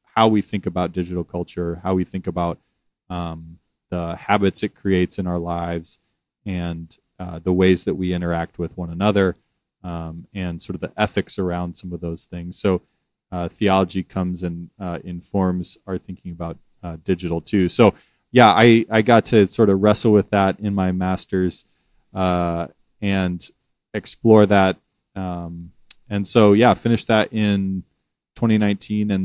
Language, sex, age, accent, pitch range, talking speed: English, male, 30-49, American, 90-100 Hz, 165 wpm